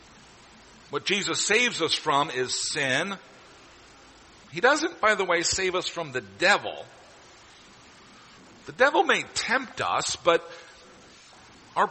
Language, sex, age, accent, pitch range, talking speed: English, male, 50-69, American, 155-215 Hz, 120 wpm